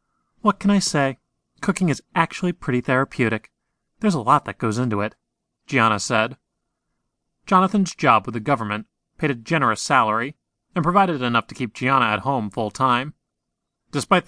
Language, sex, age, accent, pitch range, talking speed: English, male, 30-49, American, 115-165 Hz, 155 wpm